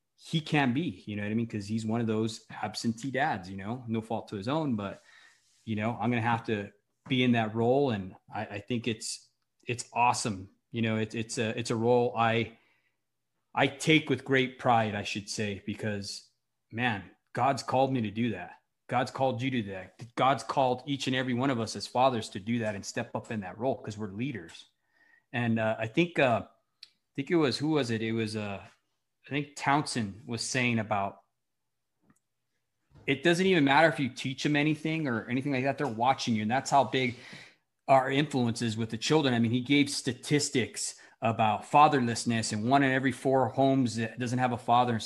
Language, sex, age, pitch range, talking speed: English, male, 20-39, 115-135 Hz, 215 wpm